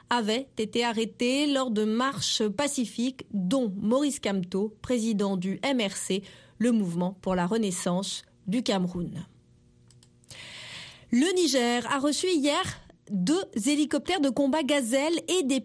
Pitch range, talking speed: 195-285 Hz, 125 wpm